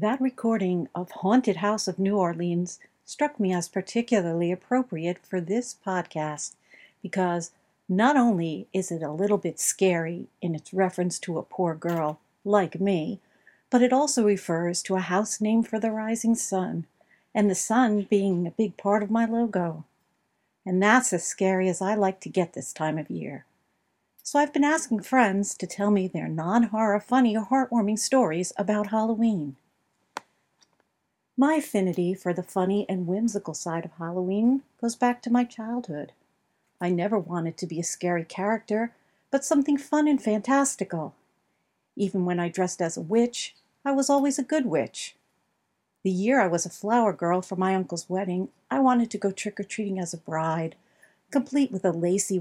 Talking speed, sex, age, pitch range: 170 wpm, female, 50-69, 180-230 Hz